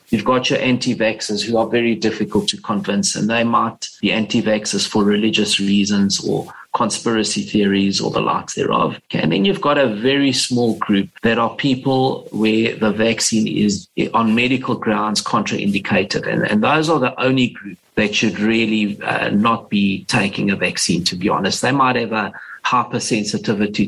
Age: 50-69